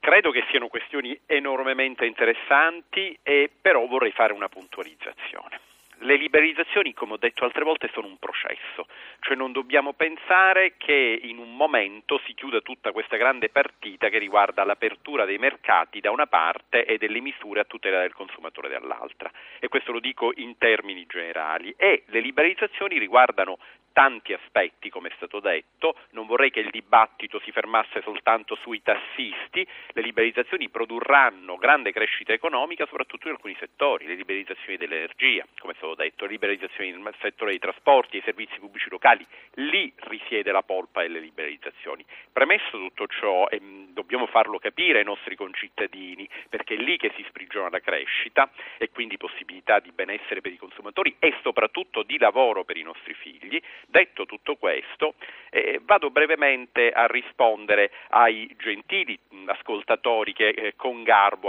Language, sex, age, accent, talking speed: Italian, male, 40-59, native, 155 wpm